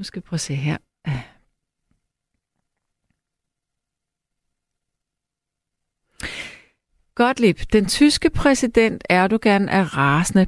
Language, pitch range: Danish, 170-235 Hz